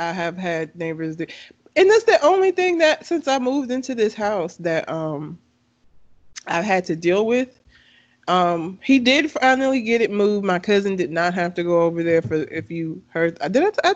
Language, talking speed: English, 205 wpm